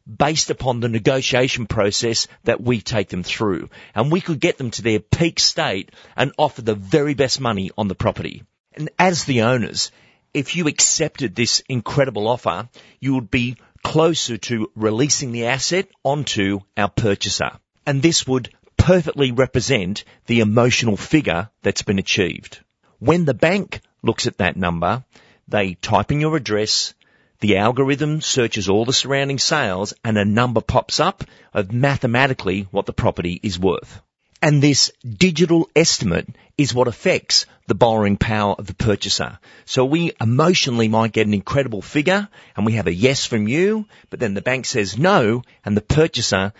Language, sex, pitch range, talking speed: English, male, 105-140 Hz, 165 wpm